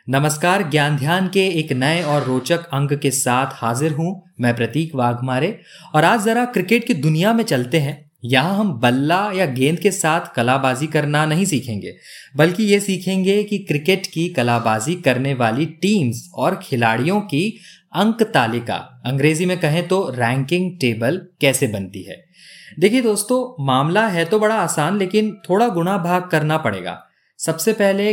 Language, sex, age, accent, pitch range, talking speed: Hindi, male, 20-39, native, 130-185 Hz, 160 wpm